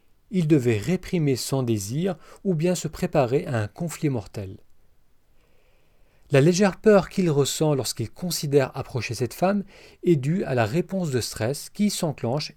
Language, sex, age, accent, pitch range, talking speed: French, male, 40-59, French, 115-175 Hz, 155 wpm